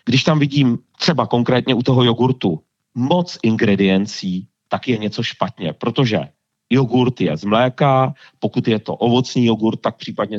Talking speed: 150 wpm